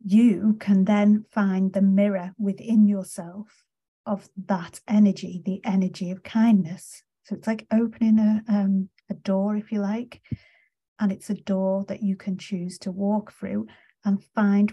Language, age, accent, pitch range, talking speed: English, 30-49, British, 190-210 Hz, 160 wpm